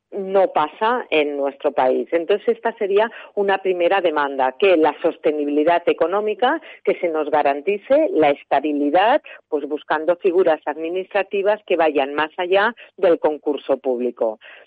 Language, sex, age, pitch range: Spanish, female, 40-59, 155-225 Hz